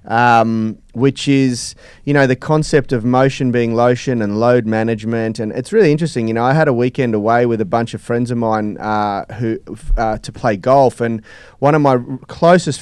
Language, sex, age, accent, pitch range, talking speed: English, male, 30-49, Australian, 110-130 Hz, 195 wpm